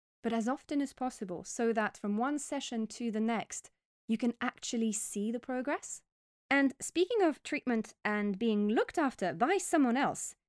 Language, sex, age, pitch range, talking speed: English, female, 20-39, 195-245 Hz, 170 wpm